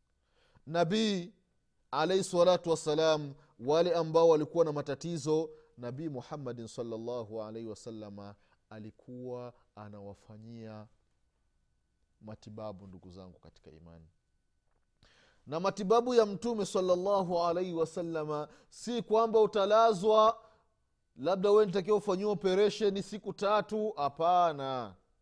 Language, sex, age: Swahili, male, 30-49